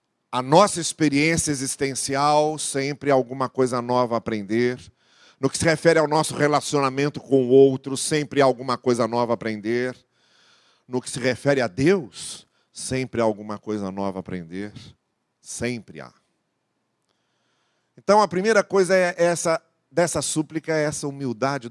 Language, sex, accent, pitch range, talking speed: Portuguese, male, Brazilian, 125-165 Hz, 145 wpm